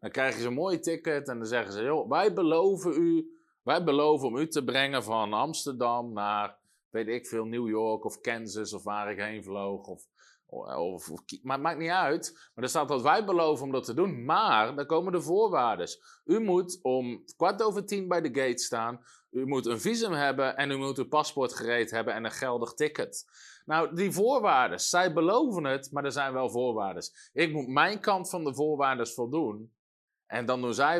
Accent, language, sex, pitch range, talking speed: Dutch, Dutch, male, 120-175 Hz, 205 wpm